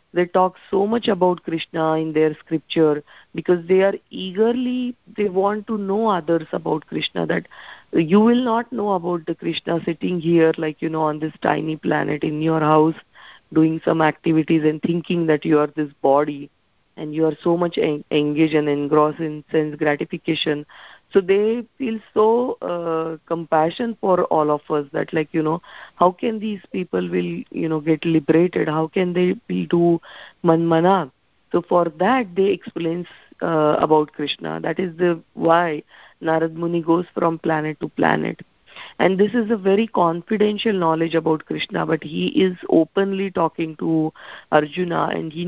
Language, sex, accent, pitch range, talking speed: English, female, Indian, 155-185 Hz, 170 wpm